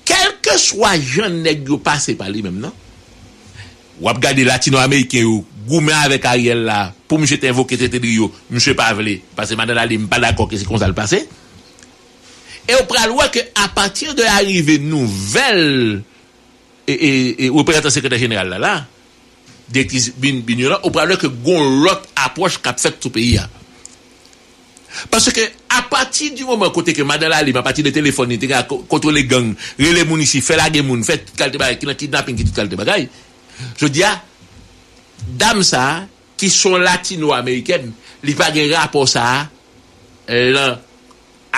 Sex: male